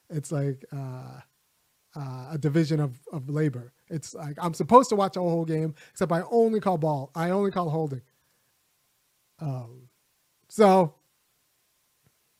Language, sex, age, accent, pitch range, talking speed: English, male, 30-49, American, 155-200 Hz, 140 wpm